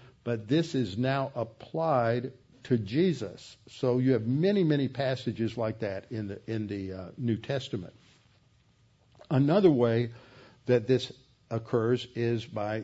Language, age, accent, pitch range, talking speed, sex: English, 60-79, American, 115-140 Hz, 135 wpm, male